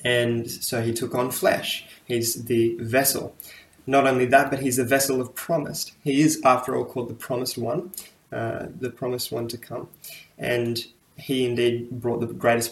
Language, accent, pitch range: English, Australian, 120-145 Hz